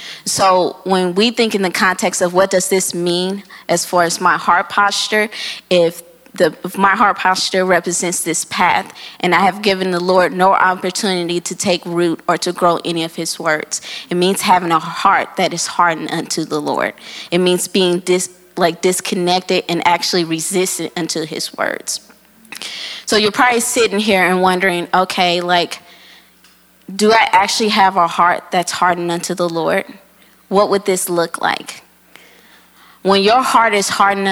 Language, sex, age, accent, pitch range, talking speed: English, female, 20-39, American, 175-195 Hz, 170 wpm